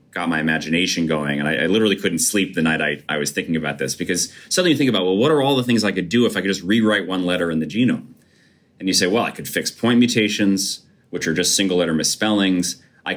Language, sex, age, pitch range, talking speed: English, male, 30-49, 85-110 Hz, 265 wpm